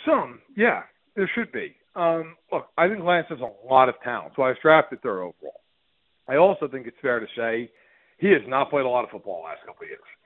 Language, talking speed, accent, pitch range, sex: English, 240 wpm, American, 145-195 Hz, male